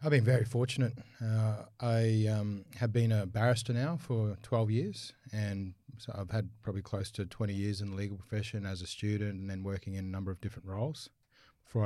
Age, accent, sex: 30-49, Australian, male